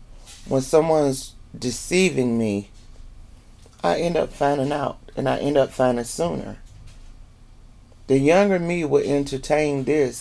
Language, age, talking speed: English, 30-49, 125 wpm